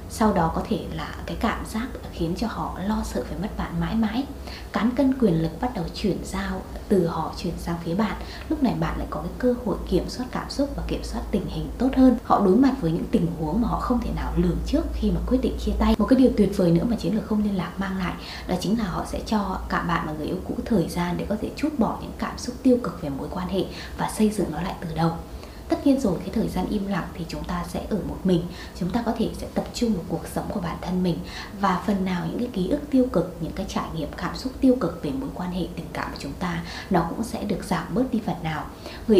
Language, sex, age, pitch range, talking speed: Vietnamese, female, 20-39, 175-240 Hz, 285 wpm